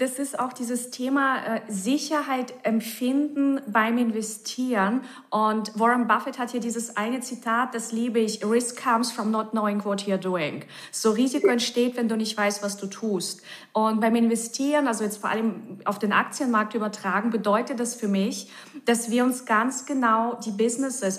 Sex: female